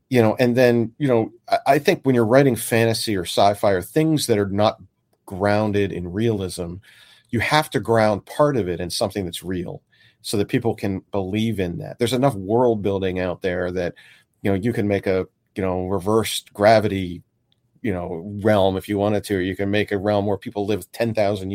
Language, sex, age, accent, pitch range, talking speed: English, male, 40-59, American, 95-115 Hz, 205 wpm